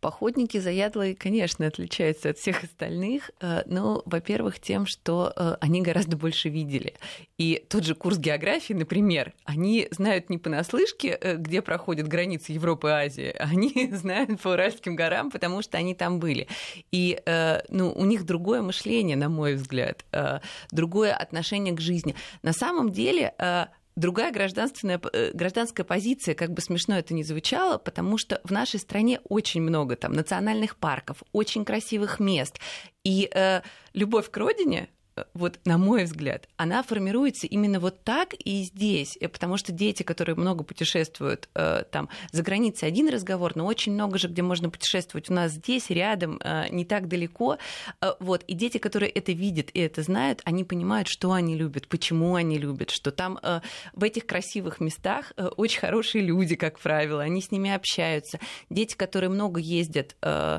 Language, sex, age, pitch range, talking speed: Russian, female, 30-49, 165-205 Hz, 155 wpm